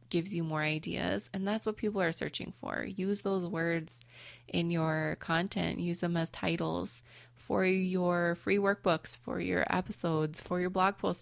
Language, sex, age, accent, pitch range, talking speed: English, female, 20-39, American, 160-185 Hz, 170 wpm